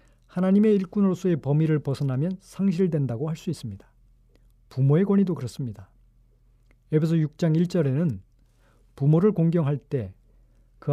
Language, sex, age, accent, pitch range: Korean, male, 40-59, native, 120-165 Hz